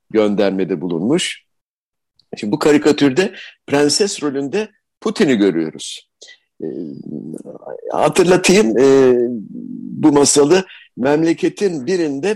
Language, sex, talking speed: Turkish, male, 70 wpm